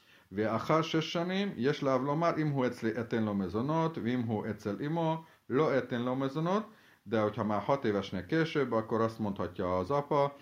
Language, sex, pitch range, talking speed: Hungarian, male, 100-135 Hz, 120 wpm